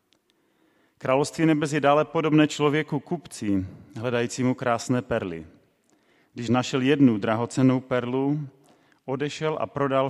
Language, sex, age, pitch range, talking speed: Czech, male, 30-49, 105-130 Hz, 105 wpm